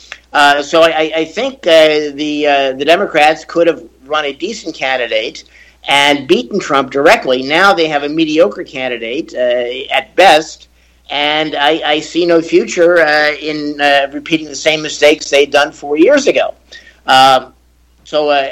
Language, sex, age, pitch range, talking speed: Arabic, male, 50-69, 135-160 Hz, 155 wpm